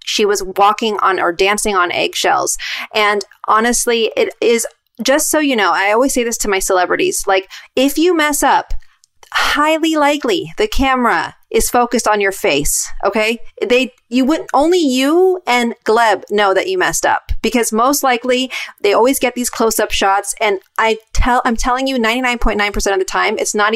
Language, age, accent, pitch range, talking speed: English, 30-49, American, 210-265 Hz, 185 wpm